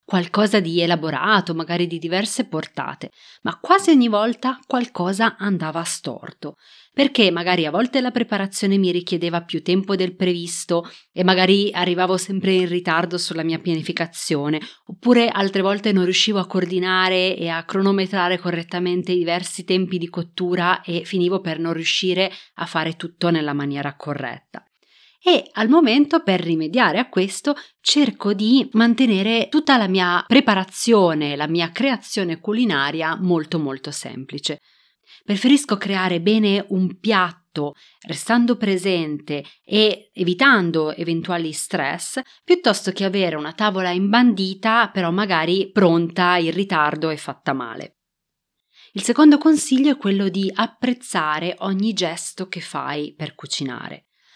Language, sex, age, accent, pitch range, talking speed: Italian, female, 30-49, native, 170-210 Hz, 135 wpm